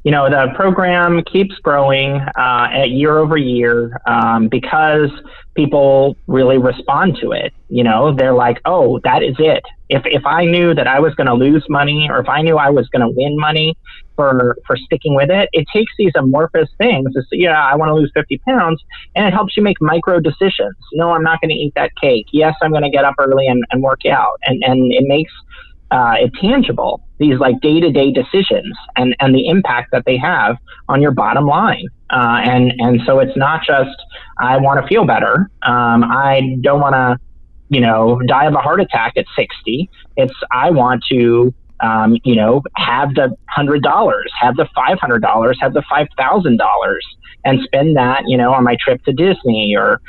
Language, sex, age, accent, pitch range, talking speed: English, male, 30-49, American, 120-155 Hz, 205 wpm